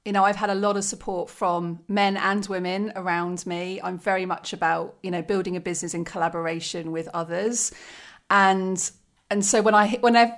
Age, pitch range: 30-49, 175-205 Hz